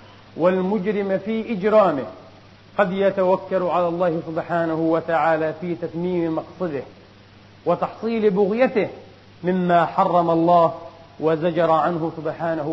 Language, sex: Arabic, male